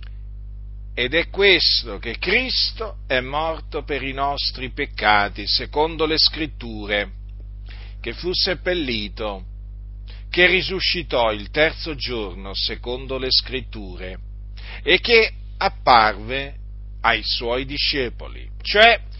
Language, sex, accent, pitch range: Italian, male, native, 100-155 Hz